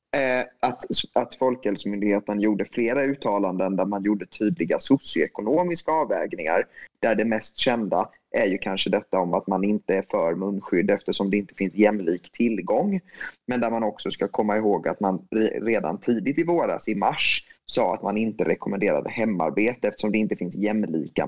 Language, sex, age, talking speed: Swedish, male, 20-39, 165 wpm